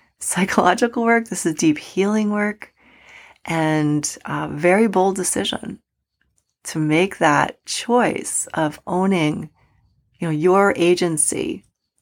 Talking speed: 110 wpm